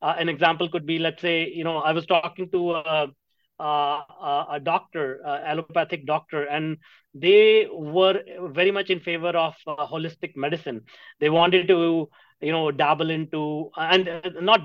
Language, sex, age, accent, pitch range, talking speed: English, male, 30-49, Indian, 150-180 Hz, 165 wpm